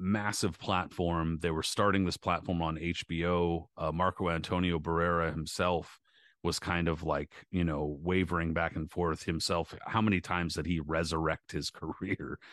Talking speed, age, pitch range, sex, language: 160 wpm, 30-49, 80-90 Hz, male, English